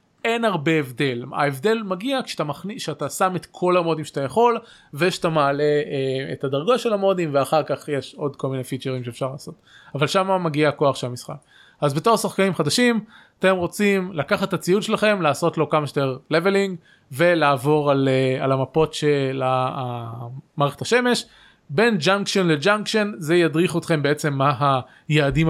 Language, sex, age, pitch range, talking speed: Hebrew, male, 20-39, 140-185 Hz, 150 wpm